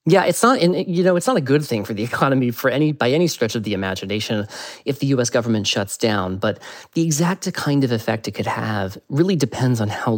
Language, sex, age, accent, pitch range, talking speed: English, male, 30-49, American, 105-135 Hz, 235 wpm